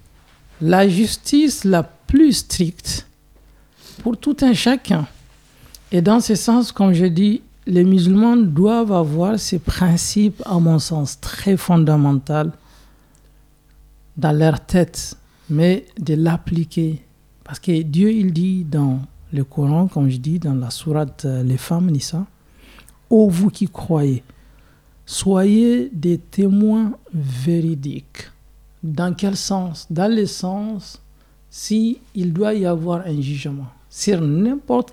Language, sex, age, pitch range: French, male, 60-79, 150-210 Hz